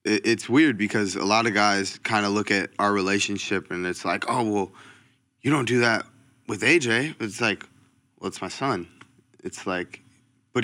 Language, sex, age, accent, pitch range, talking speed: English, male, 20-39, American, 95-120 Hz, 185 wpm